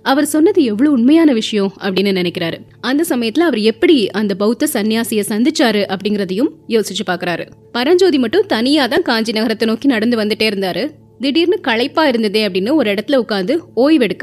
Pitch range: 200-285 Hz